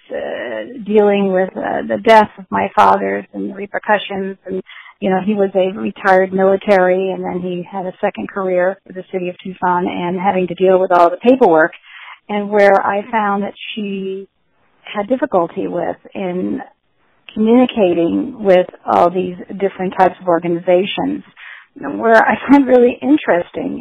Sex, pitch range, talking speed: female, 185-225 Hz, 160 wpm